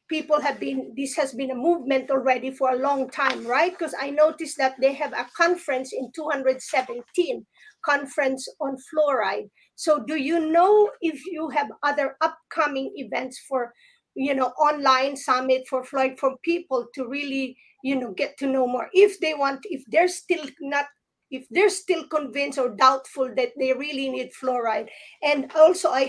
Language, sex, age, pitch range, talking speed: English, female, 40-59, 265-310 Hz, 170 wpm